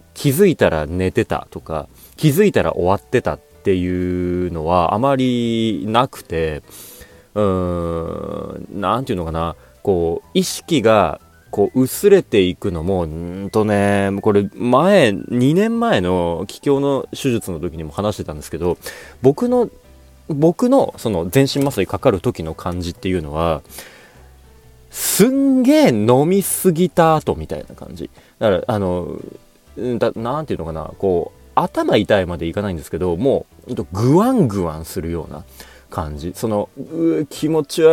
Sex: male